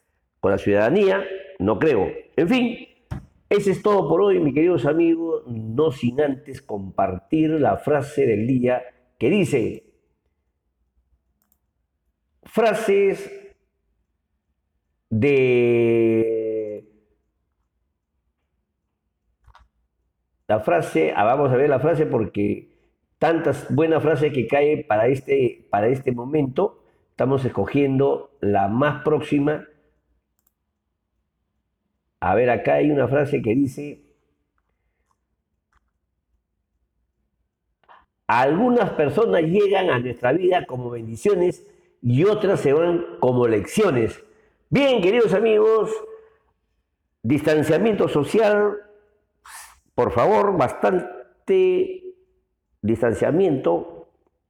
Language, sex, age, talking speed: Spanish, male, 50-69, 90 wpm